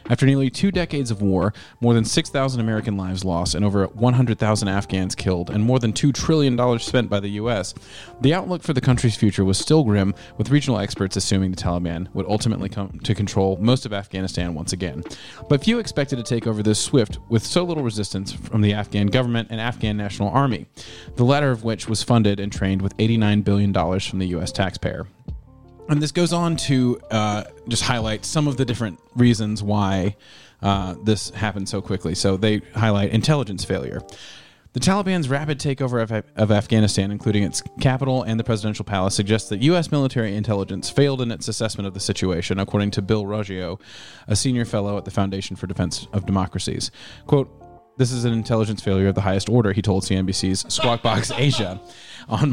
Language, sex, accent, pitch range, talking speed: English, male, American, 95-125 Hz, 190 wpm